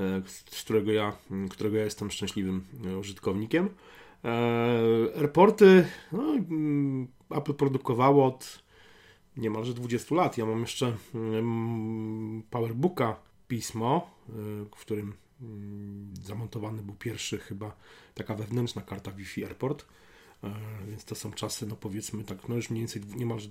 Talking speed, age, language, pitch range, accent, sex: 105 wpm, 30-49, Polish, 110-120 Hz, native, male